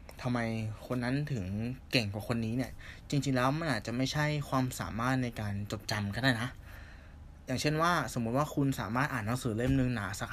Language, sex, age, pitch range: Thai, male, 20-39, 95-135 Hz